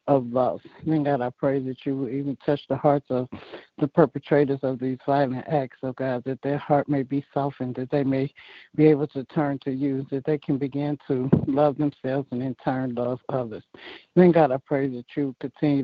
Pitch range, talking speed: 125-145 Hz, 210 wpm